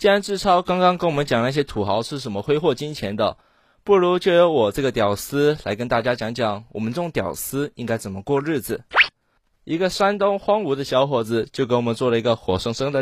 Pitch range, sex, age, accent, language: 115-160 Hz, male, 20-39, native, Chinese